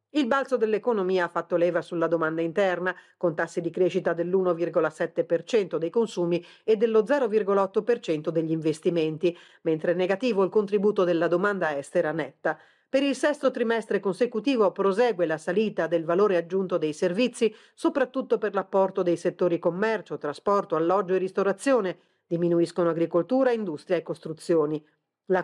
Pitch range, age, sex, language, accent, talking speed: 170-215 Hz, 40-59, female, Italian, native, 135 wpm